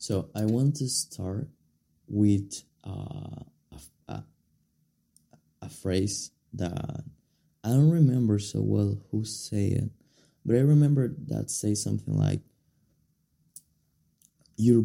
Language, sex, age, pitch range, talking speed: Spanish, male, 20-39, 100-135 Hz, 110 wpm